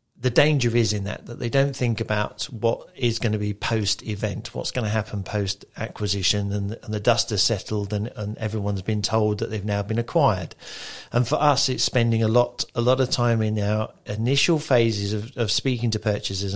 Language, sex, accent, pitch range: English, male, British, 105-120 Hz